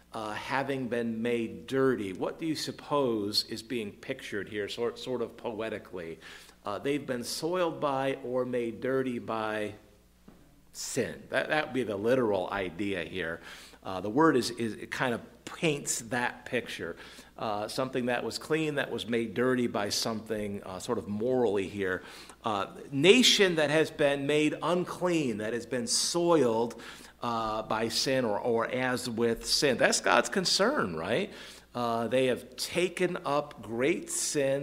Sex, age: male, 50-69